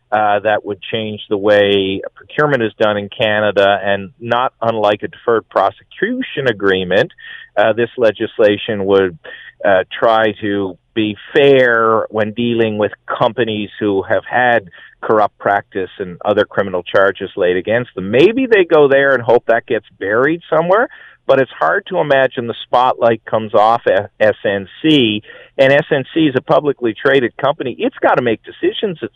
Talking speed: 160 wpm